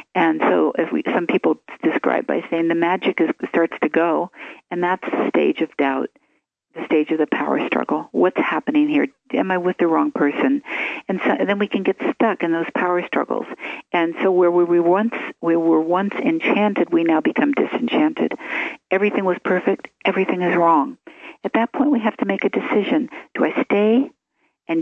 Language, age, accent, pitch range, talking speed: English, 50-69, American, 170-285 Hz, 200 wpm